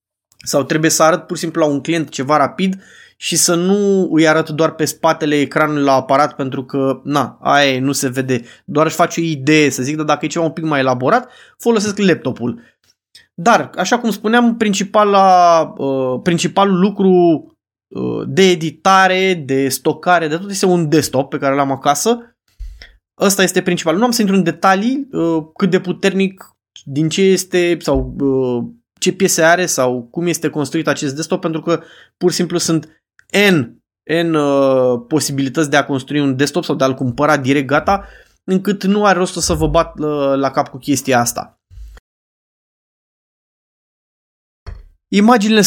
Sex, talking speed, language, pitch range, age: male, 165 wpm, Romanian, 140-185 Hz, 20-39